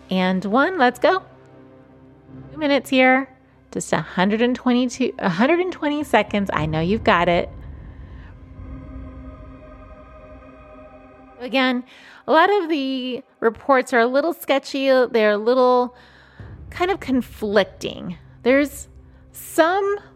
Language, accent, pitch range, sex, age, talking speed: English, American, 180-250 Hz, female, 30-49, 100 wpm